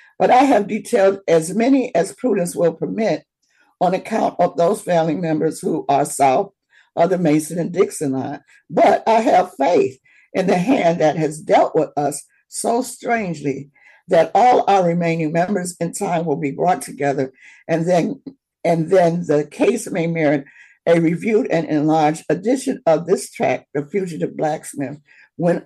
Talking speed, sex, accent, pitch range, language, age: 165 wpm, female, American, 150-195 Hz, English, 60-79